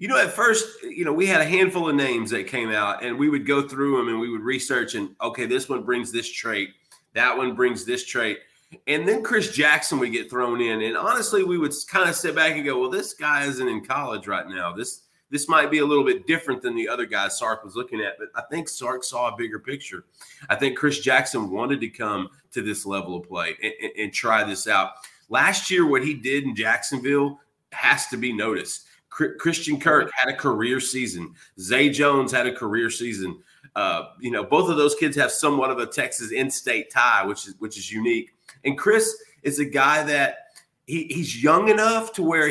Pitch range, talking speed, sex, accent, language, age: 130-185 Hz, 225 wpm, male, American, English, 30-49